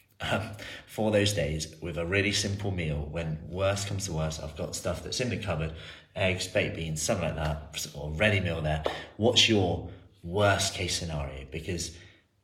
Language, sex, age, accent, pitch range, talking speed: English, male, 30-49, British, 80-105 Hz, 180 wpm